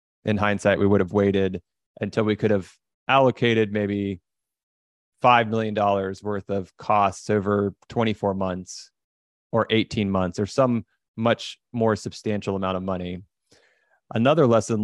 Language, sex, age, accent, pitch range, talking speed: English, male, 30-49, American, 100-110 Hz, 135 wpm